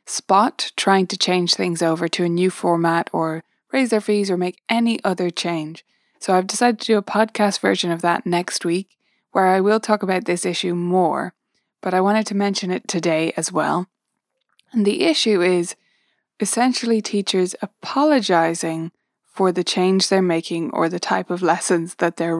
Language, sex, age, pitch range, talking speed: English, female, 20-39, 180-235 Hz, 180 wpm